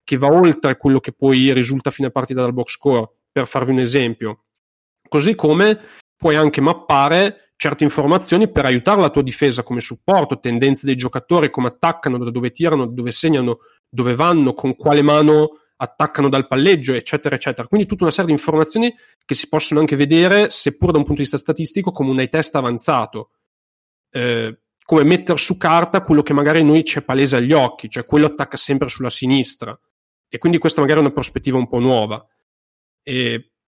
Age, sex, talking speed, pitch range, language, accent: 40-59, male, 185 wpm, 125-155 Hz, Italian, native